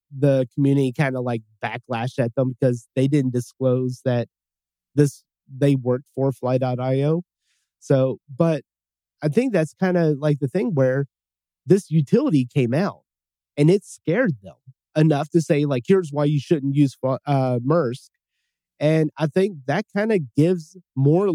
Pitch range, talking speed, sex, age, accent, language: 120-150 Hz, 155 wpm, male, 30-49, American, English